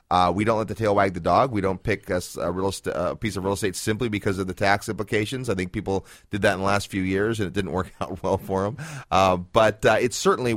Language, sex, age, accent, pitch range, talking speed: English, male, 30-49, American, 90-110 Hz, 275 wpm